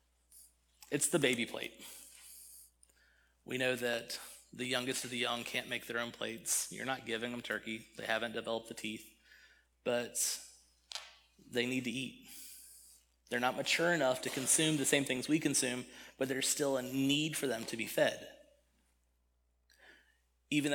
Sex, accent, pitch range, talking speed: male, American, 115-140 Hz, 155 wpm